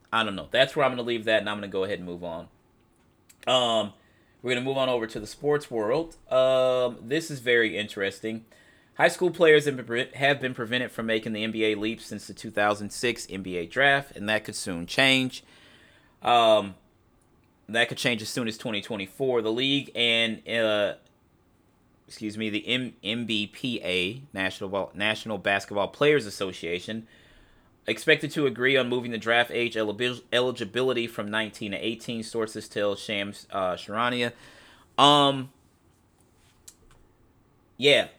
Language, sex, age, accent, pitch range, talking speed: English, male, 30-49, American, 95-120 Hz, 160 wpm